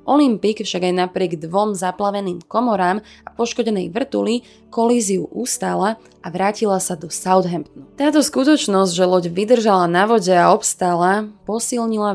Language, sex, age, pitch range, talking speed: Slovak, female, 20-39, 175-225 Hz, 135 wpm